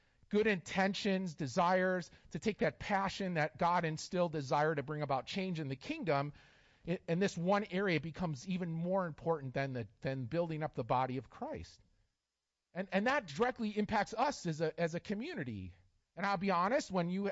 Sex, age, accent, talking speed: male, 40-59, American, 185 wpm